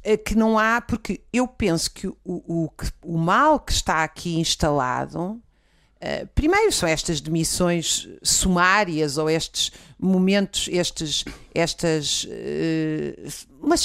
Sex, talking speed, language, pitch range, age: female, 105 wpm, Portuguese, 155-195 Hz, 50-69